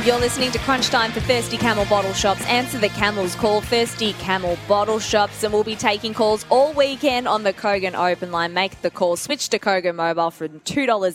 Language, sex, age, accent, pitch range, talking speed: English, female, 20-39, Australian, 185-220 Hz, 205 wpm